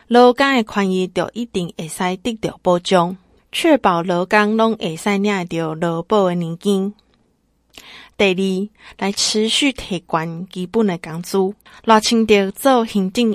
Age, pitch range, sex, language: 20-39, 180-225 Hz, female, Chinese